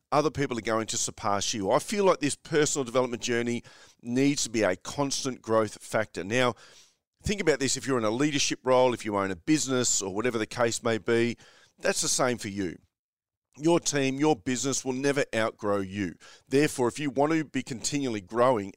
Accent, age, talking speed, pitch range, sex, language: Australian, 40-59, 200 wpm, 105-140 Hz, male, English